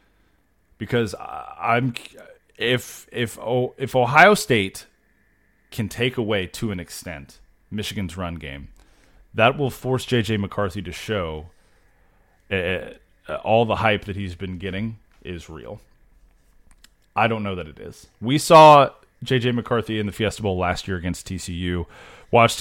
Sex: male